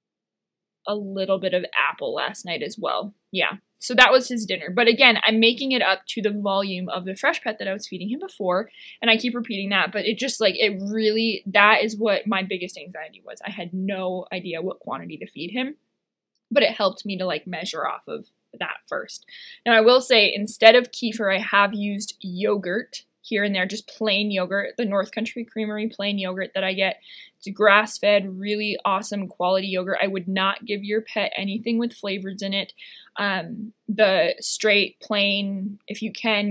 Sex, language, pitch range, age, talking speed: female, English, 190-225 Hz, 20-39, 200 wpm